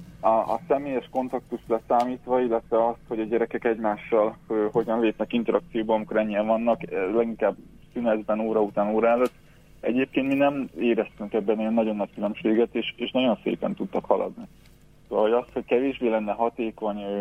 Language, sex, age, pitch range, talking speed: Hungarian, male, 20-39, 105-120 Hz, 155 wpm